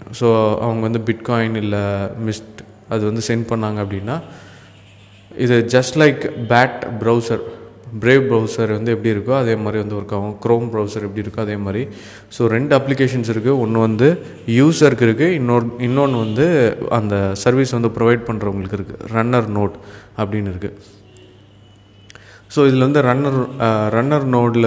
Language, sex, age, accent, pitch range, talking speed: Tamil, male, 20-39, native, 105-120 Hz, 140 wpm